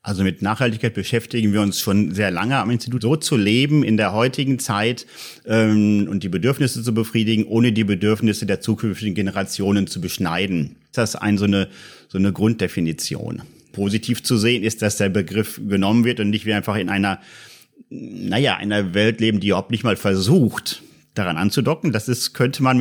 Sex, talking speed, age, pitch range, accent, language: male, 185 wpm, 40-59, 100-120 Hz, German, German